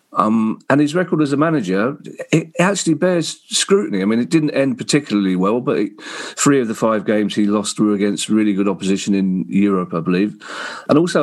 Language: English